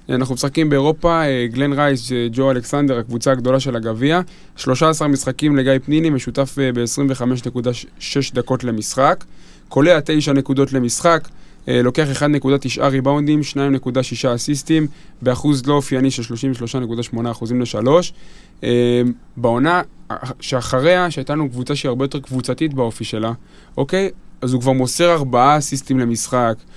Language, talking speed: Hebrew, 120 wpm